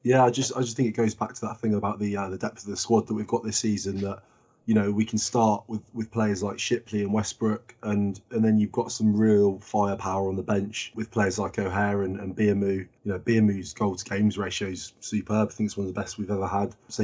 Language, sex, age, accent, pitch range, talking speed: English, male, 20-39, British, 100-115 Hz, 265 wpm